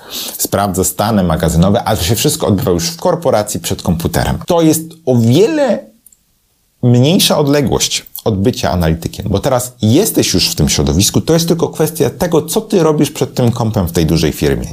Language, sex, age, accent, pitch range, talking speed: Polish, male, 30-49, native, 85-120 Hz, 180 wpm